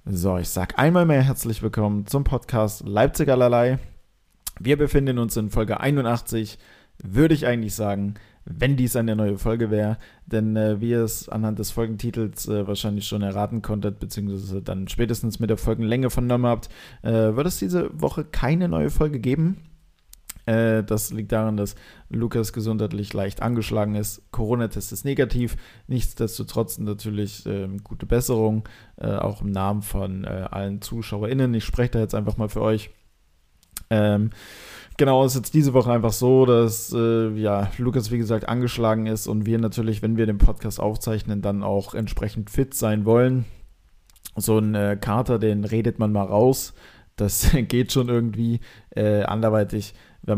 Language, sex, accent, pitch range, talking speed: German, male, German, 105-120 Hz, 160 wpm